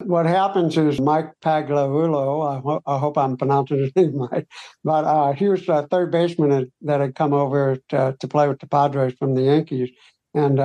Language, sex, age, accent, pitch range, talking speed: English, male, 60-79, American, 135-160 Hz, 195 wpm